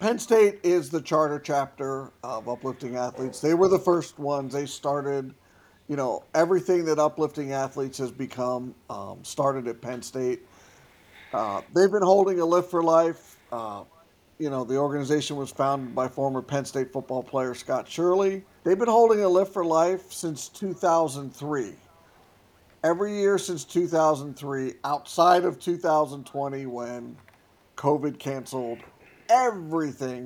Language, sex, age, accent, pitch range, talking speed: English, male, 50-69, American, 135-170 Hz, 145 wpm